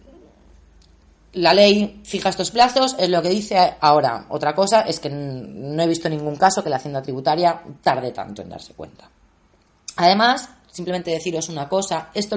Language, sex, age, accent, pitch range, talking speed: Spanish, female, 20-39, Spanish, 135-190 Hz, 170 wpm